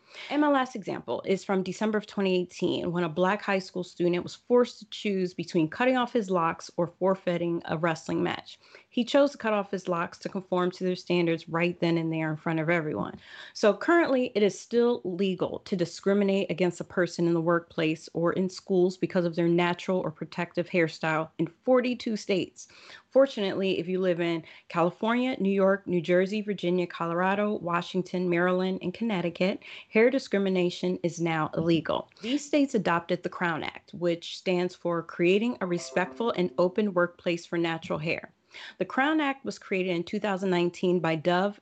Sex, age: female, 30-49